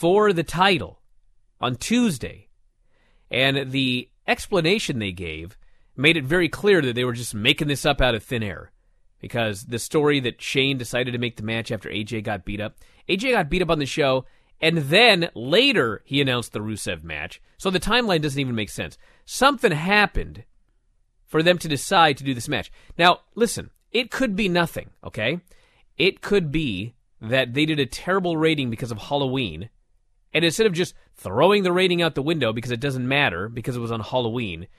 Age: 30-49